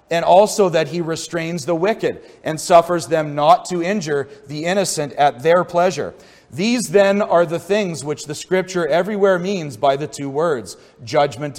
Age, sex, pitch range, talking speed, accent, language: 40-59, male, 140-170 Hz, 170 wpm, American, English